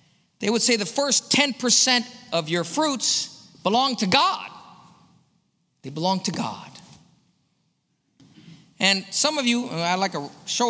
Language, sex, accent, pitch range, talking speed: English, male, American, 160-220 Hz, 135 wpm